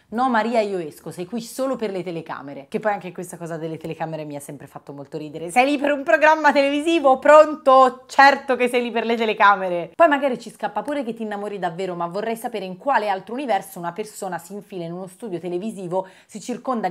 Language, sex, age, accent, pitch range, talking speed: Italian, female, 30-49, native, 180-245 Hz, 225 wpm